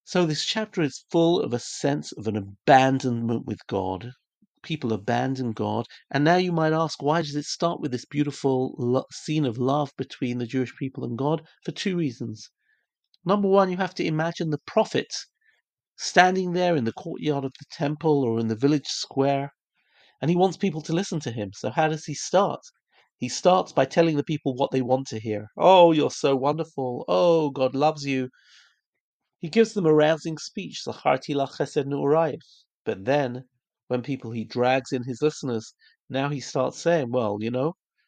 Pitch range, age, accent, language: 125-155 Hz, 40-59, British, English